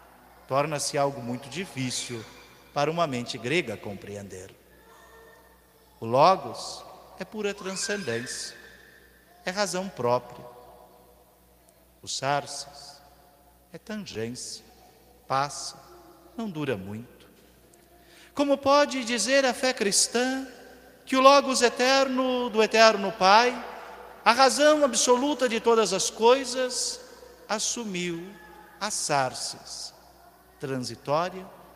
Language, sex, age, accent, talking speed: Portuguese, male, 50-69, Brazilian, 95 wpm